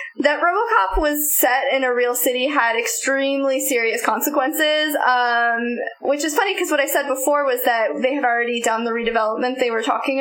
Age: 10-29